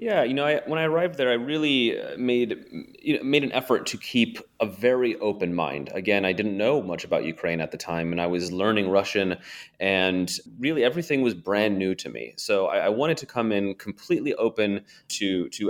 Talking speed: 215 wpm